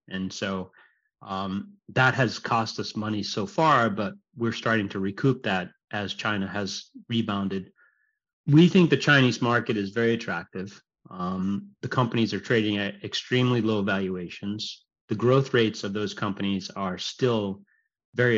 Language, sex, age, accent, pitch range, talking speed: English, male, 30-49, American, 100-120 Hz, 150 wpm